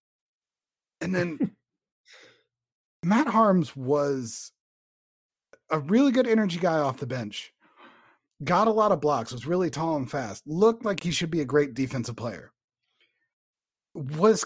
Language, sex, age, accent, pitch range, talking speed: English, male, 30-49, American, 115-175 Hz, 135 wpm